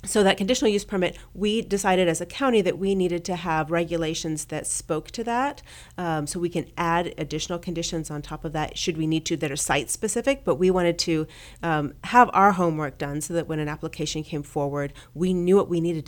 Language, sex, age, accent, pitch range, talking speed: English, female, 30-49, American, 155-185 Hz, 220 wpm